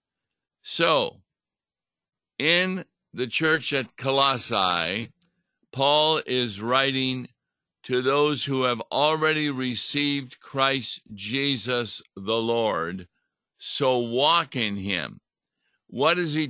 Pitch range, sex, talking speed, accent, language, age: 115-145 Hz, male, 95 wpm, American, English, 50-69